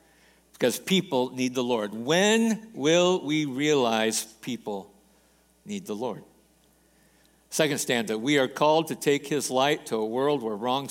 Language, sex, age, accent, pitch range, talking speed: English, male, 60-79, American, 120-165 Hz, 155 wpm